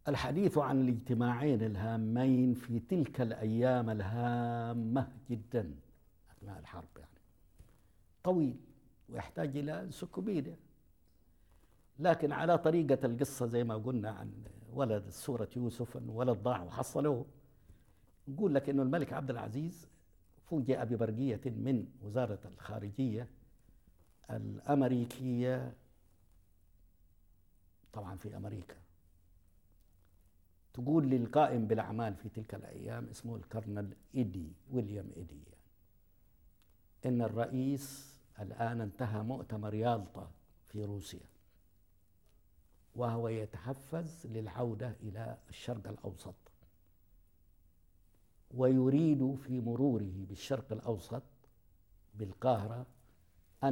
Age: 60-79